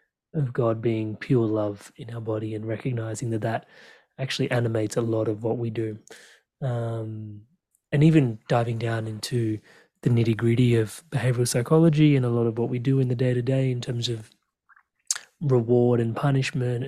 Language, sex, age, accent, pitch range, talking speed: English, male, 30-49, Australian, 115-140 Hz, 180 wpm